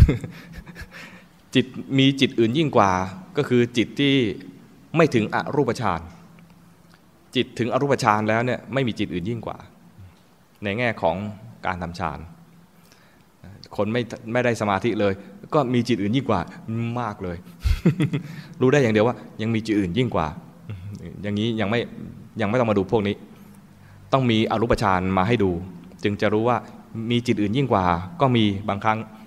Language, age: English, 20-39